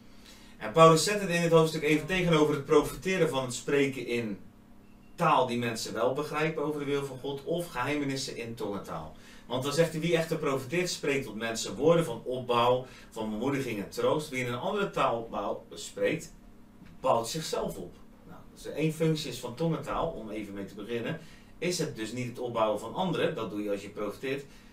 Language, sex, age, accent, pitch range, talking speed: Dutch, male, 40-59, Dutch, 110-160 Hz, 200 wpm